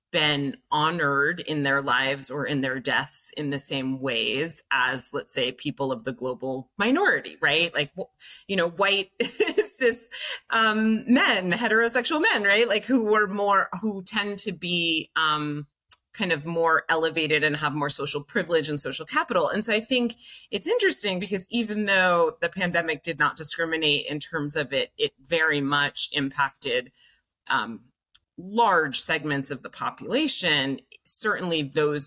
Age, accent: 30-49, American